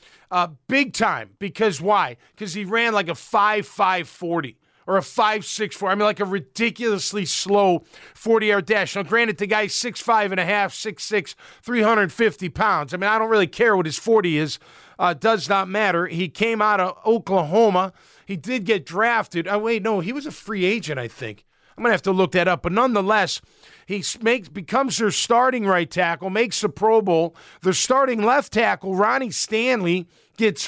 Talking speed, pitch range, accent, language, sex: 200 wpm, 185-225 Hz, American, English, male